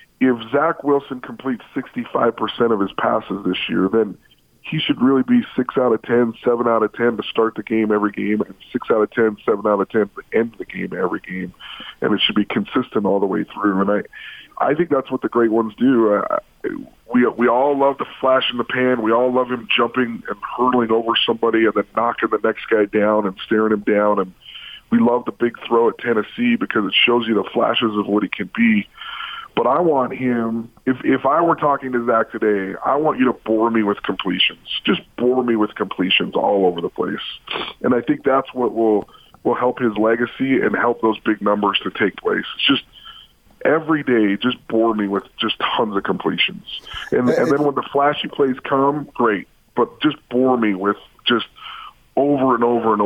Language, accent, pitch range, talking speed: English, American, 105-130 Hz, 215 wpm